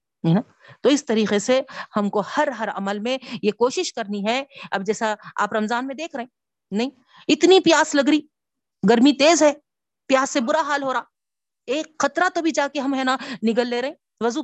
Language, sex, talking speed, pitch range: Urdu, female, 190 wpm, 225-295 Hz